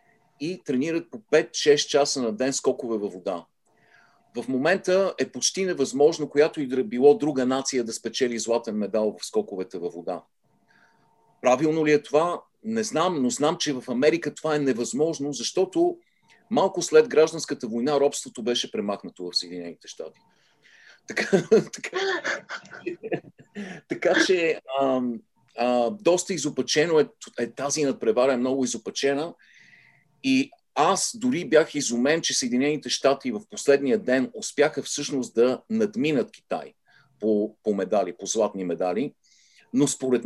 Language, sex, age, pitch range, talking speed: Bulgarian, male, 40-59, 130-215 Hz, 130 wpm